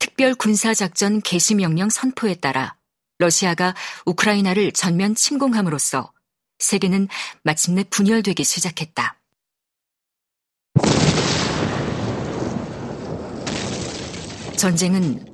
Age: 40-59